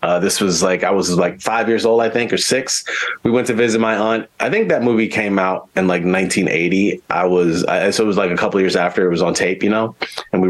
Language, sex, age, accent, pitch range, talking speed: English, male, 30-49, American, 110-155 Hz, 275 wpm